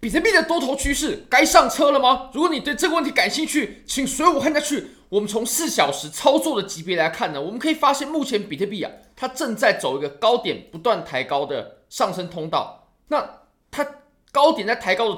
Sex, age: male, 20-39